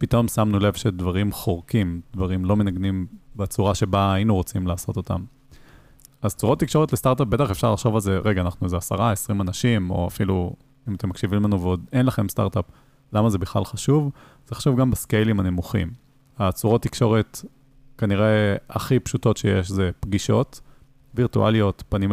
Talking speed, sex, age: 155 wpm, male, 20-39